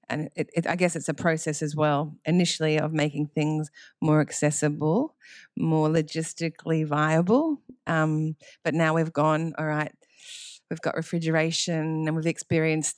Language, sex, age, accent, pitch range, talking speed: English, female, 30-49, Australian, 150-175 Hz, 150 wpm